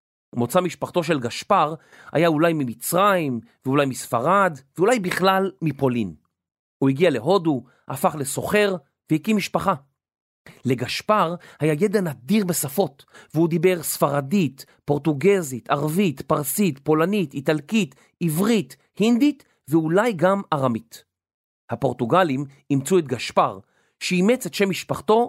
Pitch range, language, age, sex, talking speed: 130-190 Hz, Hebrew, 40-59, male, 105 wpm